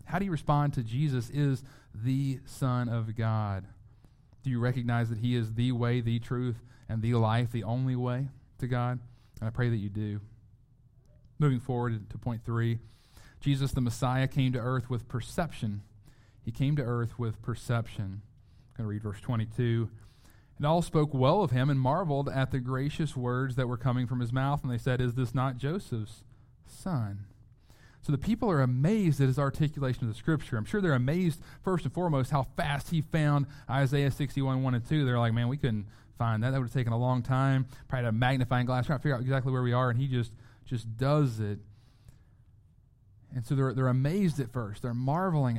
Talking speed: 205 wpm